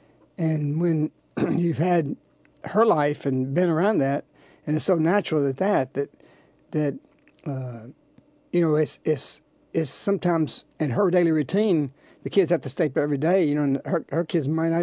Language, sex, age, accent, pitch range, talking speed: English, male, 60-79, American, 145-185 Hz, 180 wpm